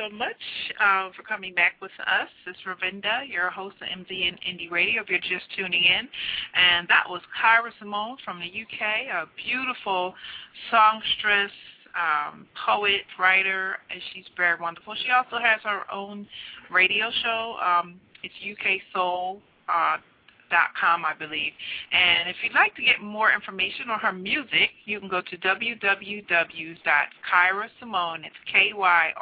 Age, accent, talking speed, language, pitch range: 40-59, American, 155 wpm, English, 175-210 Hz